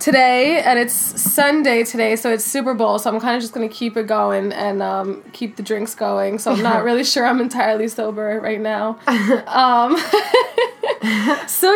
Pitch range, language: 195-245 Hz, English